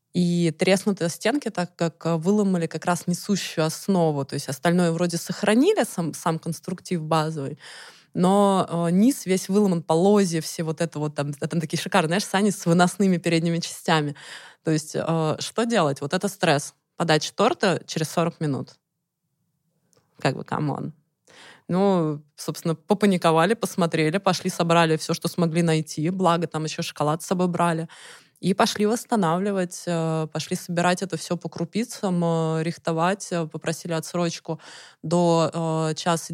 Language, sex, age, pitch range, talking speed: Russian, female, 20-39, 160-185 Hz, 145 wpm